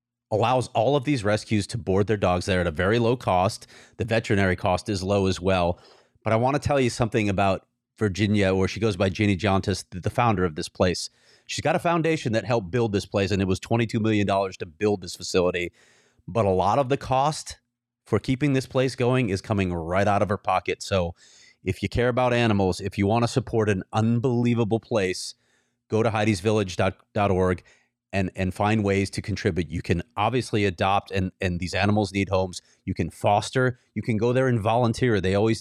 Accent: American